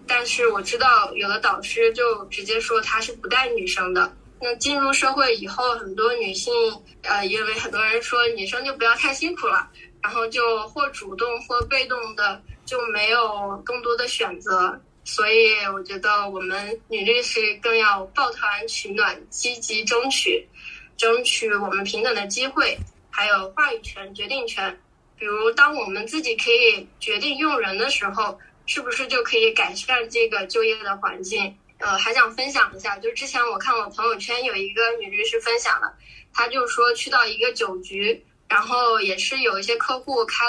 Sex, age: female, 10-29